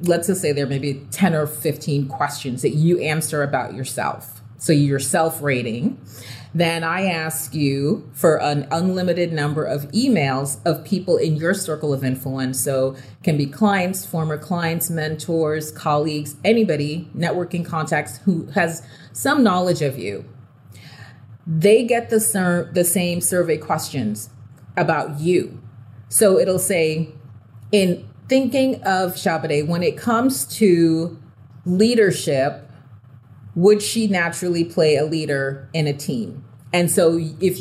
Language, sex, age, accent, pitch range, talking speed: English, female, 30-49, American, 145-195 Hz, 140 wpm